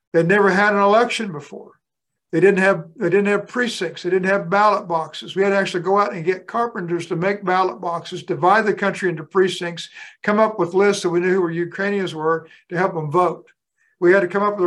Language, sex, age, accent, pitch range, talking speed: English, male, 60-79, American, 165-195 Hz, 230 wpm